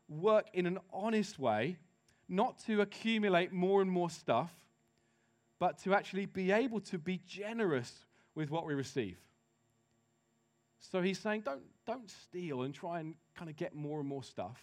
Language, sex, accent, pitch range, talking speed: English, male, British, 125-200 Hz, 165 wpm